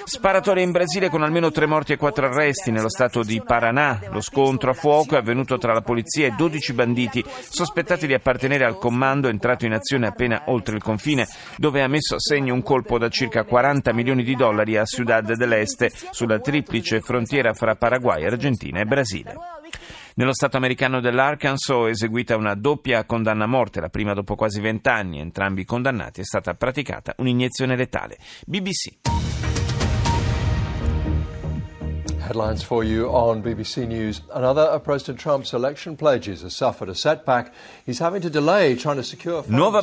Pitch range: 110-140 Hz